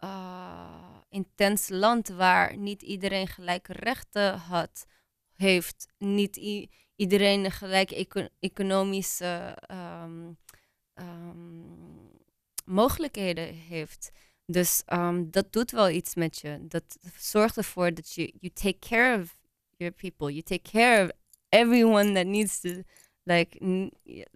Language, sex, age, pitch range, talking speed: English, female, 20-39, 175-205 Hz, 120 wpm